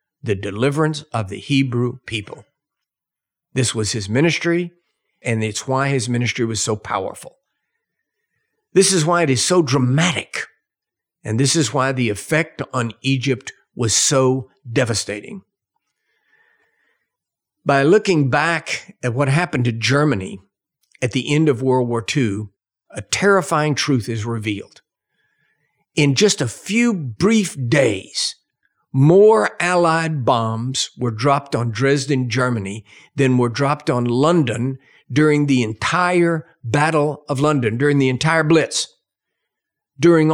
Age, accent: 50-69, American